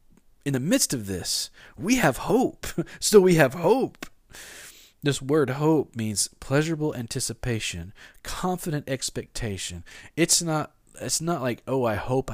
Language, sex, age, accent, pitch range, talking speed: English, male, 40-59, American, 110-155 Hz, 140 wpm